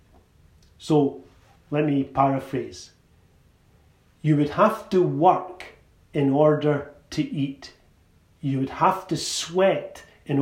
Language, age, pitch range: English, 40-59, 145-220 Hz